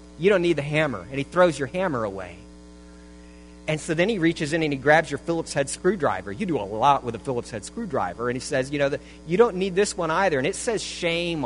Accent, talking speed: American, 255 wpm